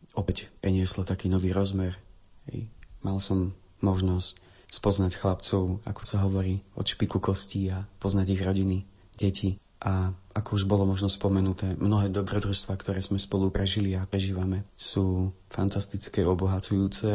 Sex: male